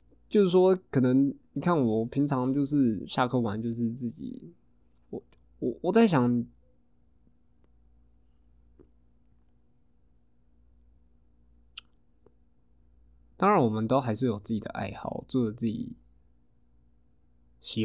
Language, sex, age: Chinese, male, 20-39